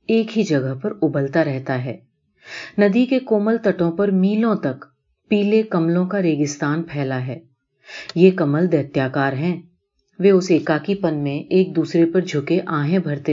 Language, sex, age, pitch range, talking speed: Urdu, female, 40-59, 145-195 Hz, 105 wpm